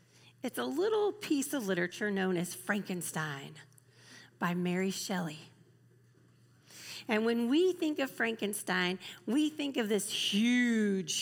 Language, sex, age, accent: English, female, 40-59, American